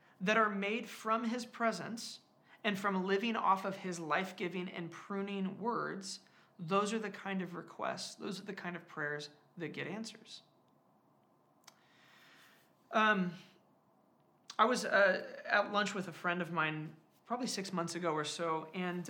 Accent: American